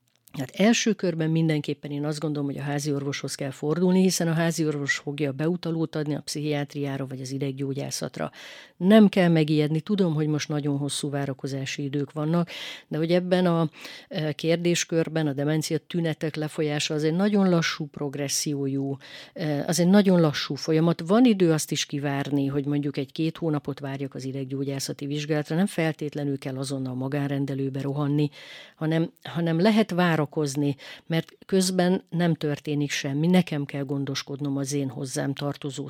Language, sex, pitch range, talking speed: Hungarian, female, 140-170 Hz, 150 wpm